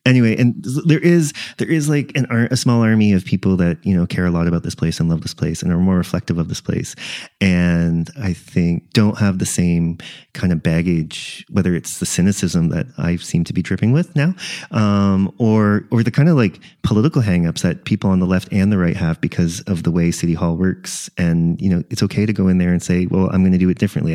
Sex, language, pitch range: male, English, 90-115 Hz